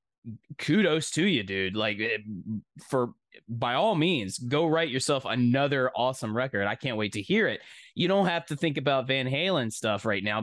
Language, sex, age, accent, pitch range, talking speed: English, male, 20-39, American, 125-170 Hz, 185 wpm